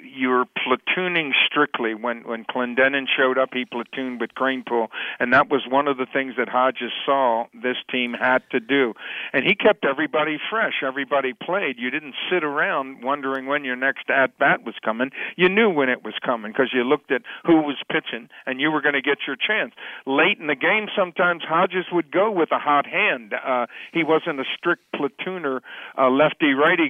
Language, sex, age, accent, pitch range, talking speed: English, male, 50-69, American, 130-155 Hz, 195 wpm